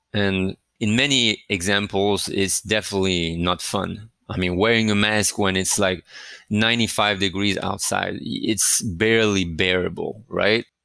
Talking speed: 125 wpm